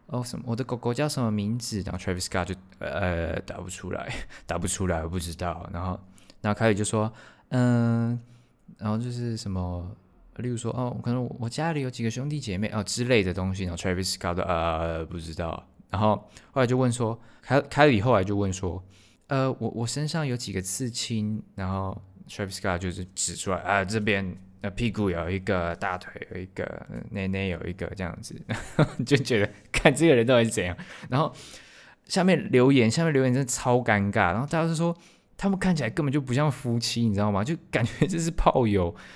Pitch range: 95-130 Hz